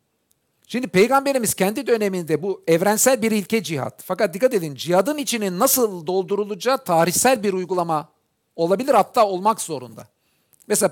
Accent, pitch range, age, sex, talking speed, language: native, 170-230 Hz, 50-69, male, 130 wpm, Turkish